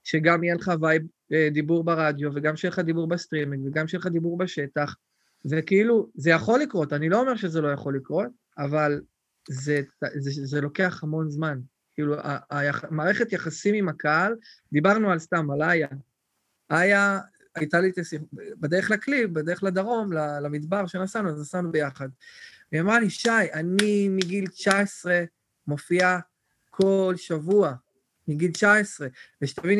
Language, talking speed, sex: Hebrew, 145 wpm, male